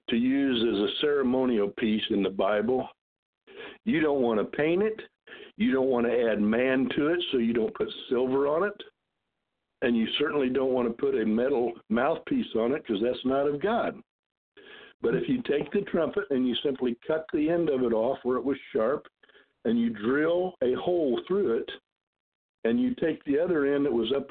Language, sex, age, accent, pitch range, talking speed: English, male, 60-79, American, 125-180 Hz, 200 wpm